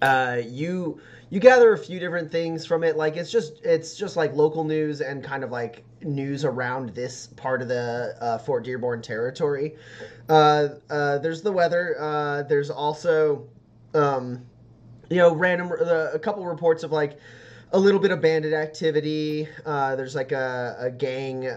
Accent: American